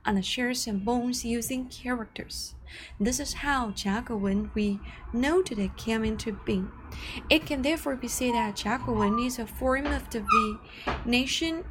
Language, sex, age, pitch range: Chinese, female, 20-39, 225-285 Hz